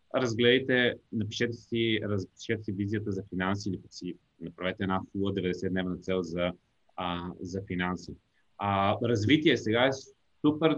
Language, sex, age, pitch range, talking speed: Bulgarian, male, 30-49, 95-120 Hz, 115 wpm